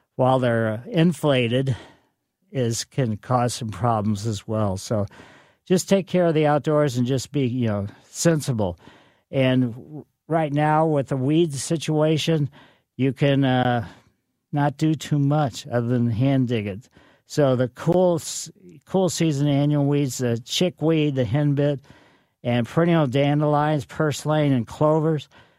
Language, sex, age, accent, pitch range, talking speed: English, male, 50-69, American, 125-150 Hz, 140 wpm